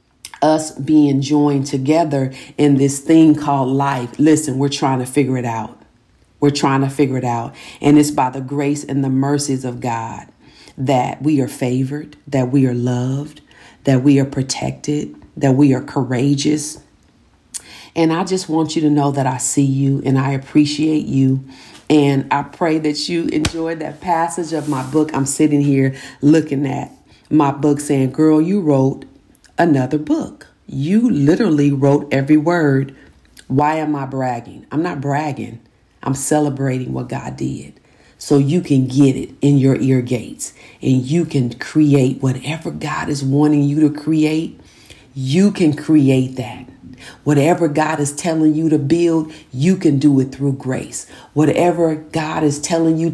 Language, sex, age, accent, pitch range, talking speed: English, female, 40-59, American, 135-155 Hz, 165 wpm